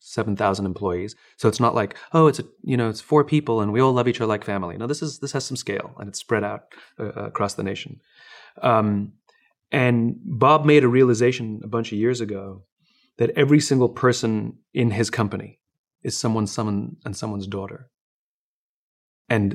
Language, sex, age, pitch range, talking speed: English, male, 30-49, 100-125 Hz, 195 wpm